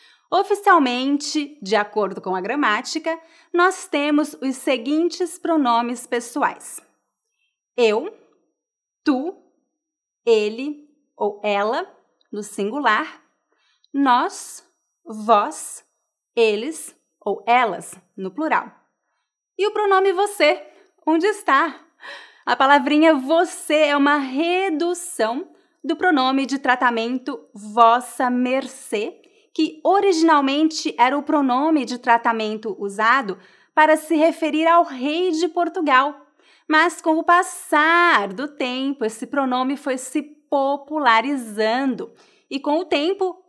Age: 30-49